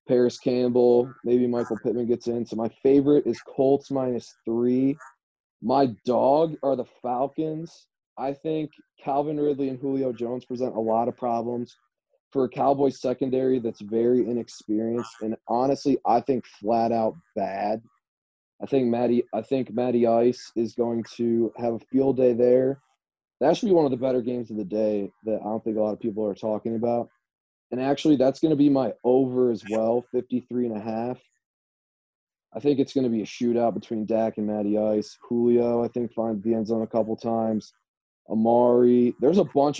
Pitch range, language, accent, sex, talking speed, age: 110-130 Hz, English, American, male, 180 wpm, 20-39